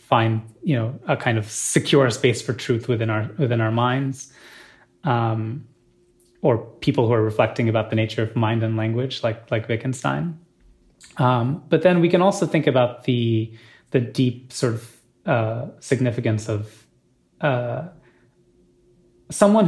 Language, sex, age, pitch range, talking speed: English, male, 20-39, 115-145 Hz, 150 wpm